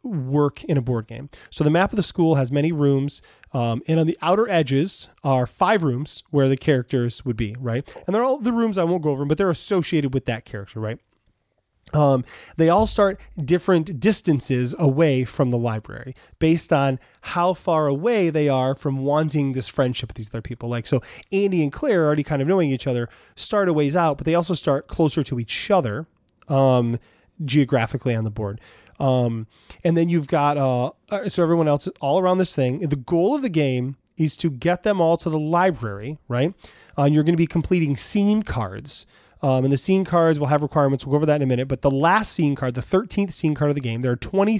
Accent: American